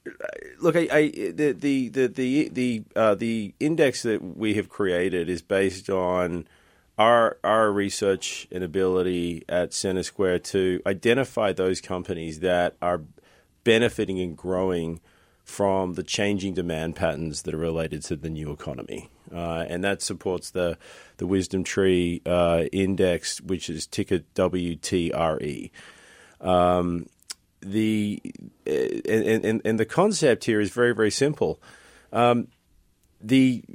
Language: English